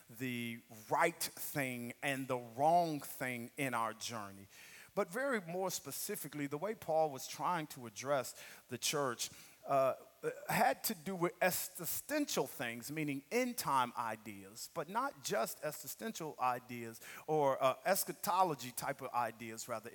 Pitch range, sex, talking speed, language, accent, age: 140-195 Hz, male, 140 wpm, English, American, 40-59